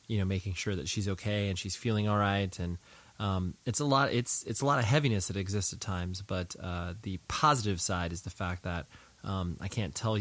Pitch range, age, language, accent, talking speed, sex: 95-110 Hz, 20-39, English, American, 235 wpm, male